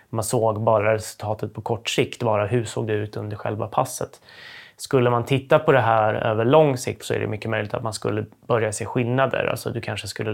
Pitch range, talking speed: 110-130 Hz, 225 wpm